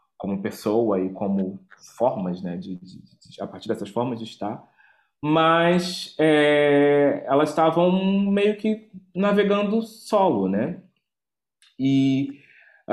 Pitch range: 110-170 Hz